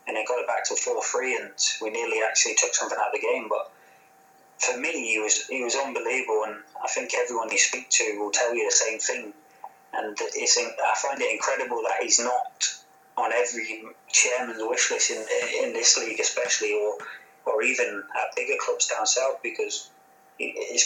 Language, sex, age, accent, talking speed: English, male, 20-39, British, 195 wpm